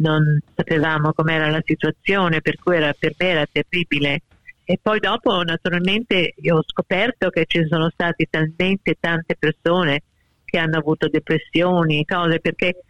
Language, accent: Italian, native